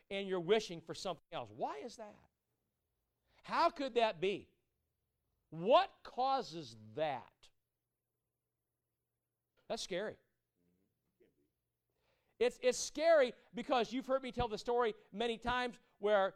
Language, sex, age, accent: English, male, 50-69, American